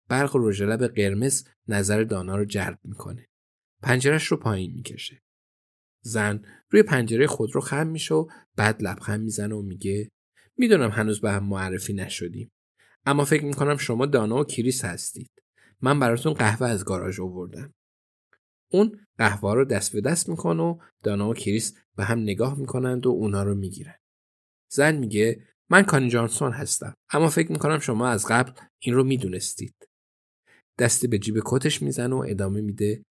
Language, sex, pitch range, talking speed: Persian, male, 105-140 Hz, 155 wpm